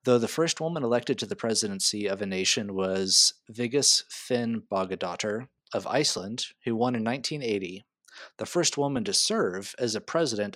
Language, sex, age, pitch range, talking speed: English, male, 30-49, 105-130 Hz, 165 wpm